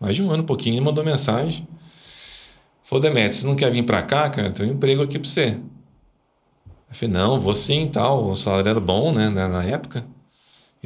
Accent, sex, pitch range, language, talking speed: Brazilian, male, 100-140 Hz, Portuguese, 215 wpm